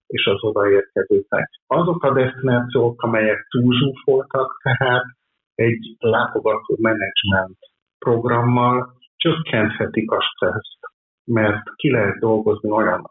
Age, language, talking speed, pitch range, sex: 50-69, Hungarian, 95 wpm, 110-145 Hz, male